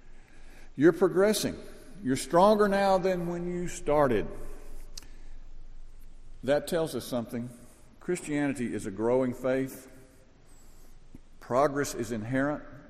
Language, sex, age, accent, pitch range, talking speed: English, male, 50-69, American, 120-145 Hz, 100 wpm